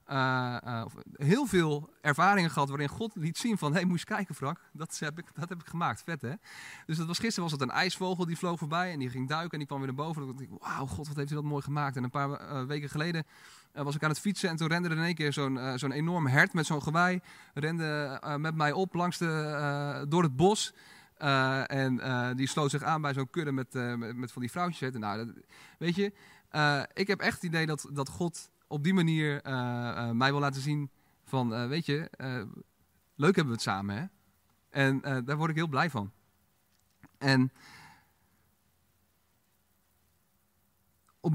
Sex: male